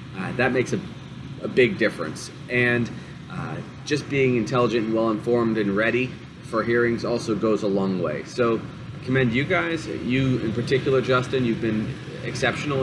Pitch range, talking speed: 110-130 Hz, 170 wpm